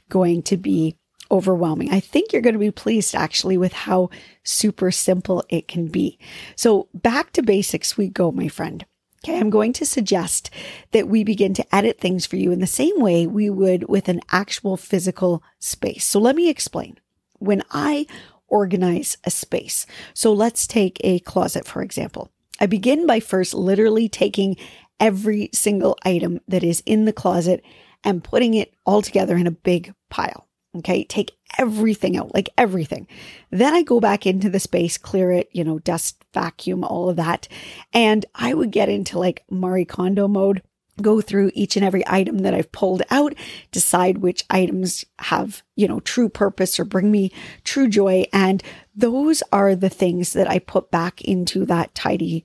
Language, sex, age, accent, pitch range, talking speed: English, female, 40-59, American, 180-215 Hz, 180 wpm